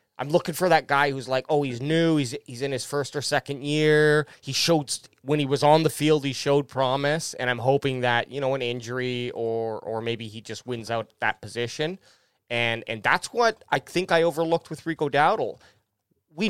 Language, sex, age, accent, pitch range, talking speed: English, male, 30-49, American, 125-155 Hz, 210 wpm